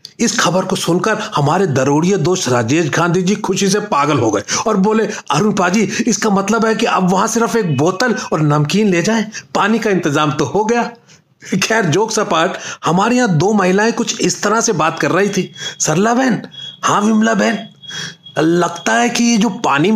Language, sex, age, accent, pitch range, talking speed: Hindi, male, 40-59, native, 175-225 Hz, 185 wpm